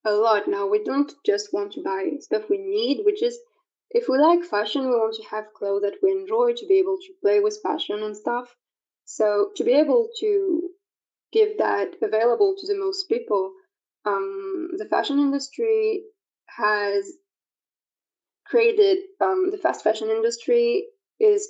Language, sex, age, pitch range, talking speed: English, female, 20-39, 260-415 Hz, 165 wpm